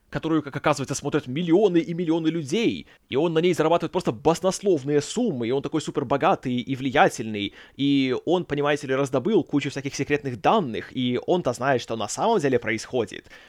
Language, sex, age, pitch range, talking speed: Russian, male, 20-39, 140-185 Hz, 180 wpm